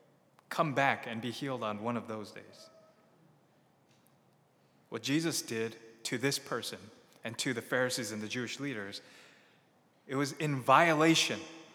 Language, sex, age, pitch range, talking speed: English, male, 20-39, 125-160 Hz, 145 wpm